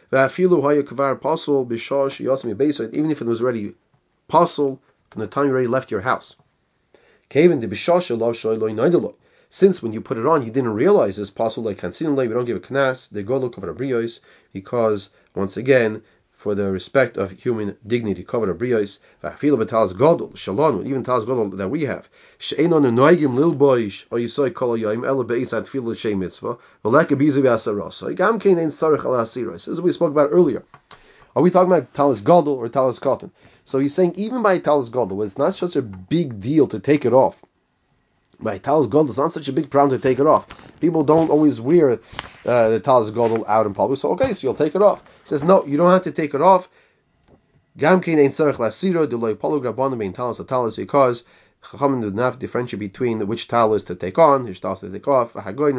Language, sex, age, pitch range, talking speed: English, male, 30-49, 115-150 Hz, 155 wpm